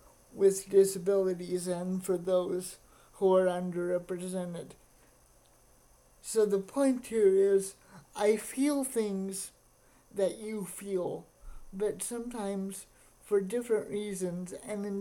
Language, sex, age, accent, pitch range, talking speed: English, male, 50-69, American, 190-215 Hz, 105 wpm